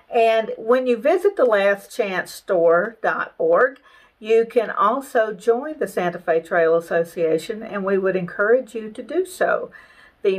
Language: English